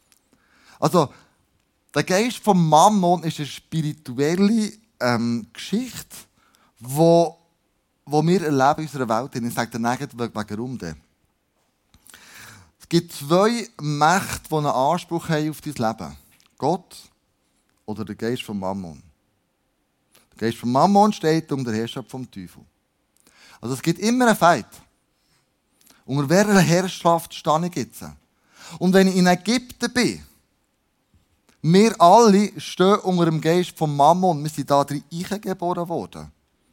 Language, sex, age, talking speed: German, male, 20-39, 135 wpm